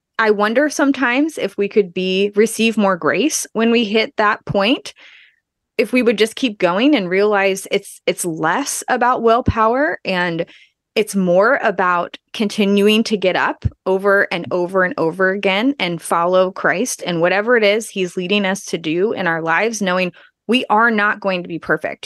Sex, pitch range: female, 180-220 Hz